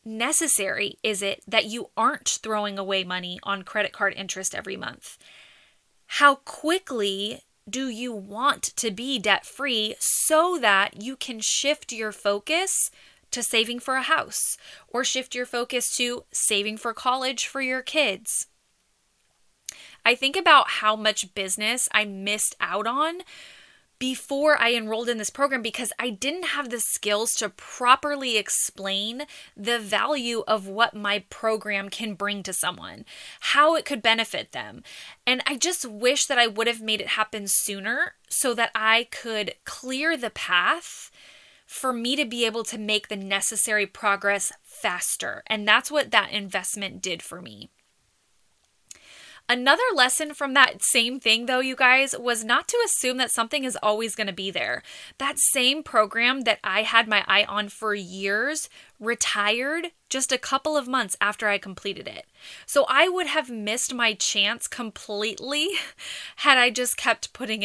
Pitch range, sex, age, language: 210-270 Hz, female, 10-29, English